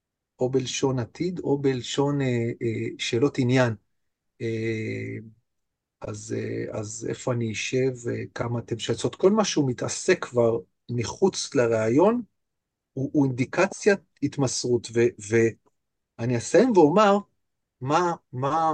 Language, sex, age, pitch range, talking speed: Hebrew, male, 40-59, 115-150 Hz, 115 wpm